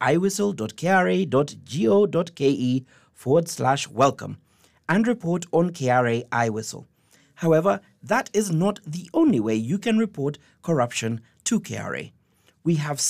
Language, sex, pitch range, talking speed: English, male, 125-190 Hz, 110 wpm